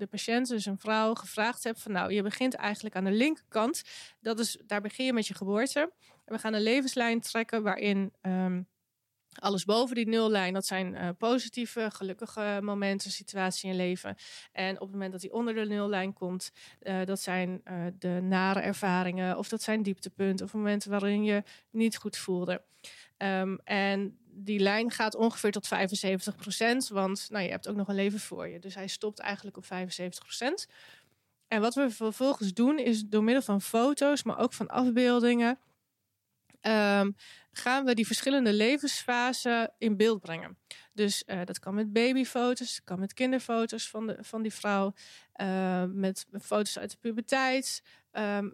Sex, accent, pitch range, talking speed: female, Dutch, 195-235 Hz, 175 wpm